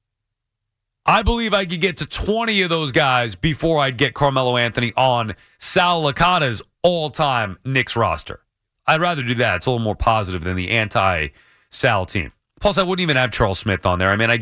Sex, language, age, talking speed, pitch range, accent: male, English, 30-49, 190 wpm, 105-130 Hz, American